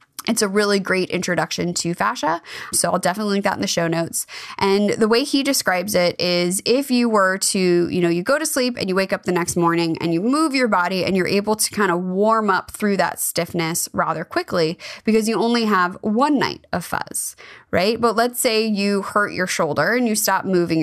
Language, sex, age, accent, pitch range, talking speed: English, female, 20-39, American, 175-215 Hz, 225 wpm